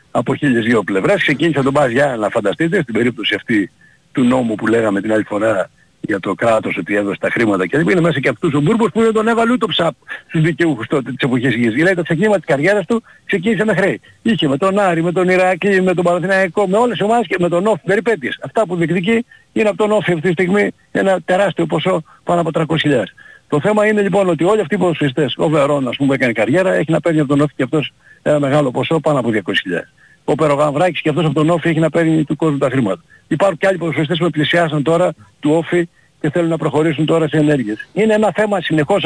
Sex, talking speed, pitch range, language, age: male, 230 wpm, 155-200 Hz, Greek, 60-79